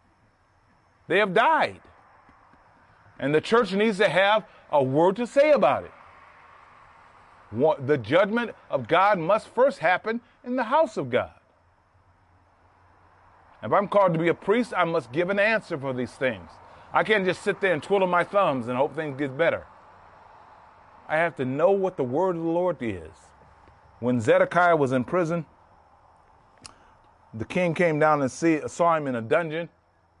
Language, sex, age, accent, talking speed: English, male, 30-49, American, 165 wpm